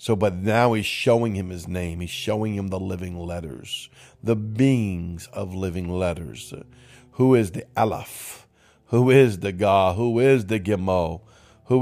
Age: 50-69